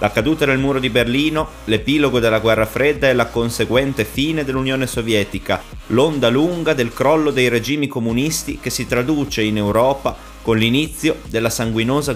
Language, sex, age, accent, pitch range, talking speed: Italian, male, 30-49, native, 105-130 Hz, 160 wpm